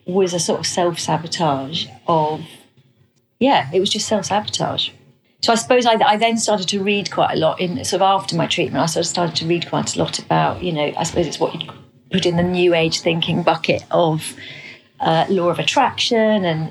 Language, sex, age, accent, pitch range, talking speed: English, female, 40-59, British, 155-190 Hz, 210 wpm